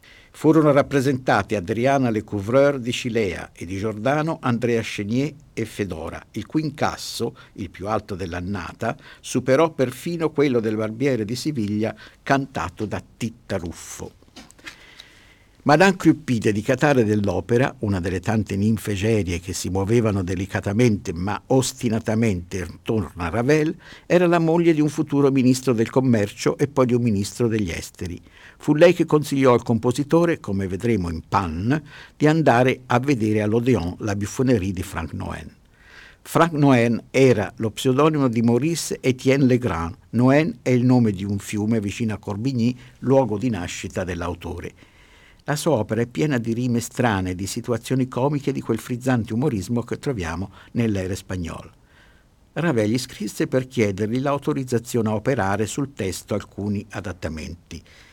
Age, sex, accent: 50-69, male, native